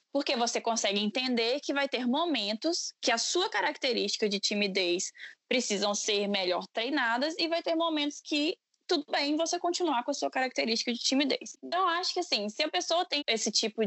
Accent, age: Brazilian, 10-29